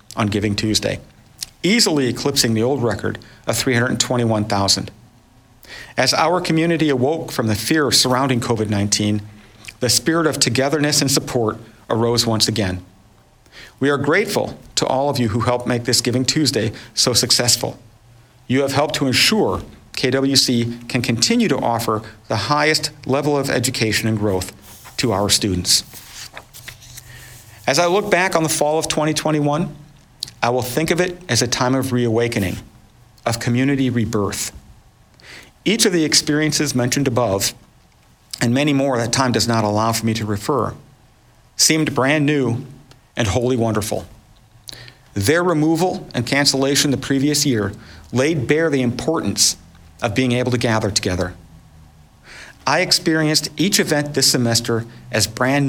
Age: 40-59